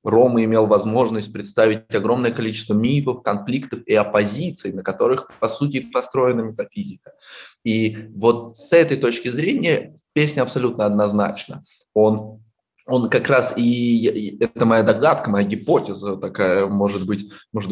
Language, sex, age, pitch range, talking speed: Russian, male, 20-39, 105-130 Hz, 135 wpm